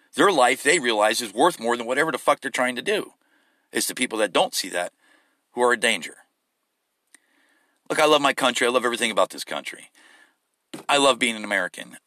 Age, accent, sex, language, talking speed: 40-59, American, male, English, 210 wpm